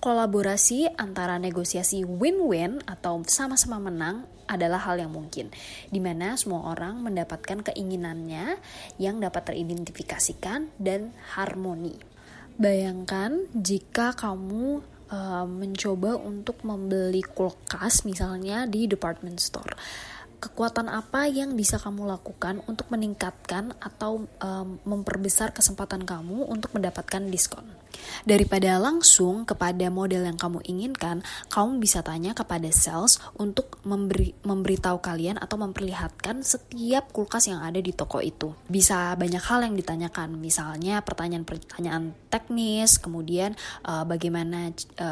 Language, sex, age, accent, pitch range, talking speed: Indonesian, female, 20-39, native, 175-210 Hz, 115 wpm